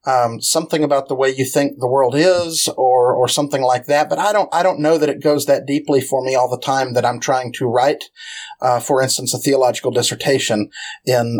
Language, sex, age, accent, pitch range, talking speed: English, male, 50-69, American, 125-145 Hz, 225 wpm